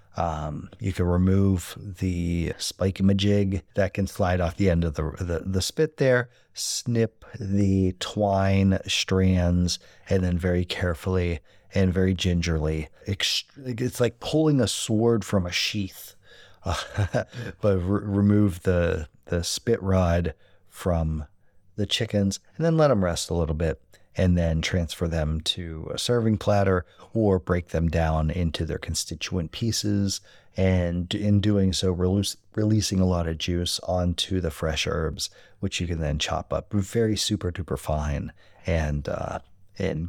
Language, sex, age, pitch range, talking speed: English, male, 30-49, 85-105 Hz, 150 wpm